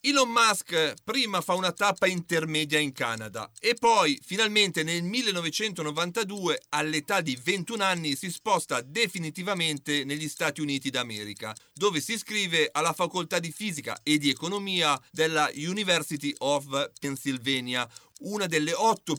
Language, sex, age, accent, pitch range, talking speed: Italian, male, 40-59, native, 145-200 Hz, 130 wpm